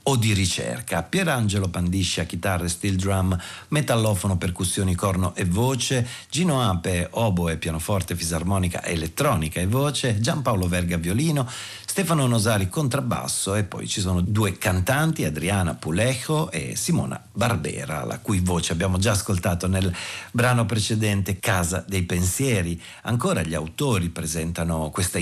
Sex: male